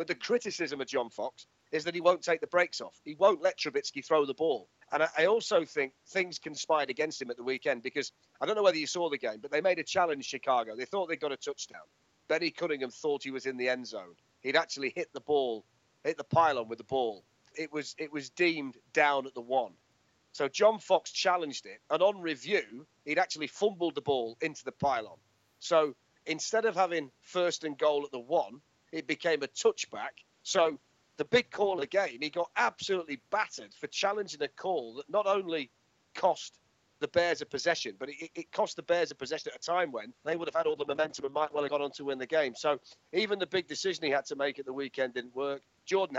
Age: 40-59